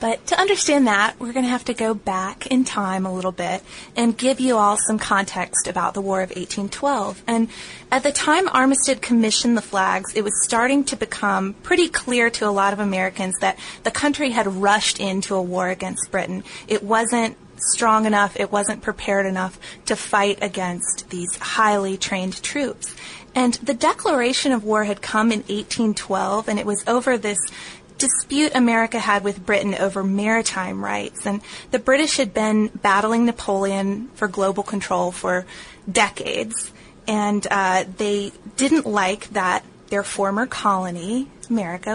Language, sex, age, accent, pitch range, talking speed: English, female, 20-39, American, 195-235 Hz, 165 wpm